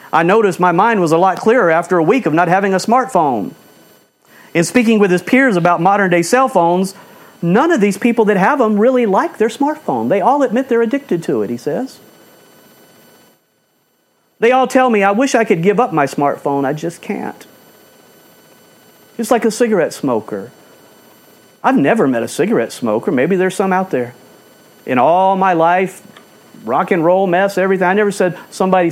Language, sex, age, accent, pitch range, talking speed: English, male, 50-69, American, 155-210 Hz, 185 wpm